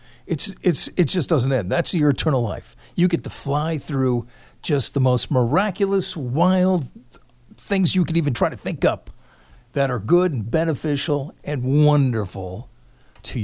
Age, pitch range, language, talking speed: 50-69, 115-155 Hz, English, 160 wpm